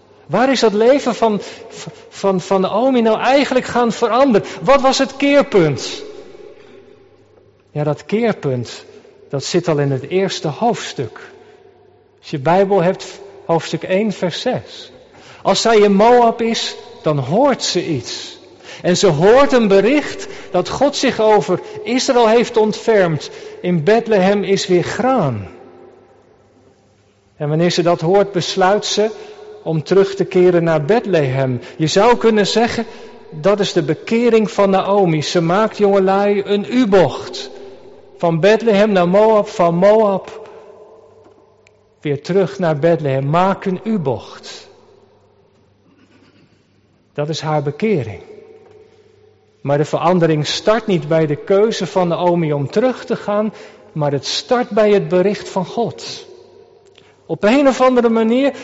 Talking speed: 135 wpm